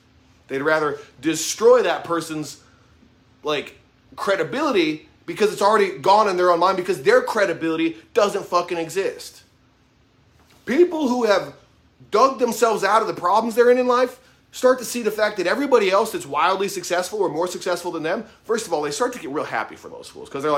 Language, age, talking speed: English, 30-49, 185 wpm